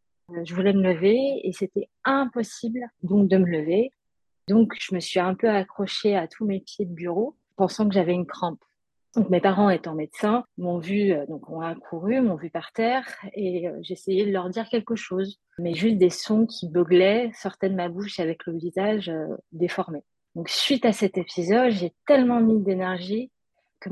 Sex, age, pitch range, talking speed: female, 30-49, 180-220 Hz, 190 wpm